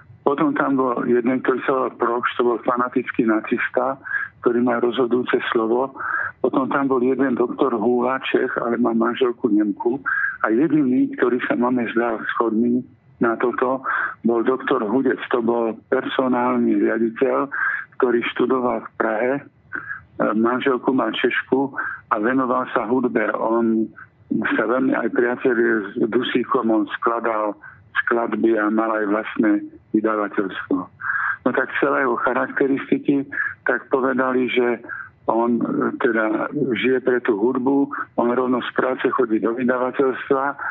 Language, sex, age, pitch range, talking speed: Slovak, male, 50-69, 115-135 Hz, 130 wpm